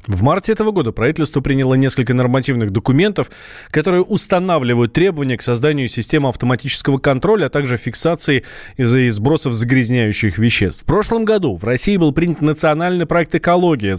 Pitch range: 130-170 Hz